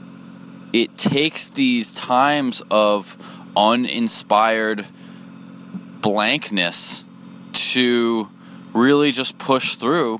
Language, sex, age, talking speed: English, male, 20-39, 70 wpm